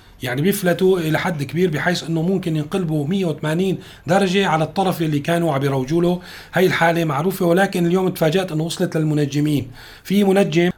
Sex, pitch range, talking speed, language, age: male, 140-175 Hz, 150 wpm, Arabic, 40-59